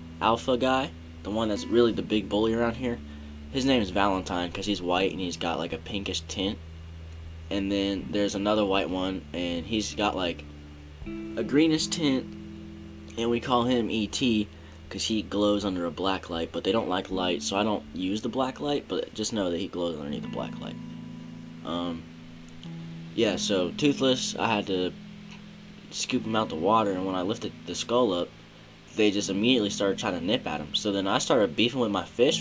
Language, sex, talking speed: English, male, 200 wpm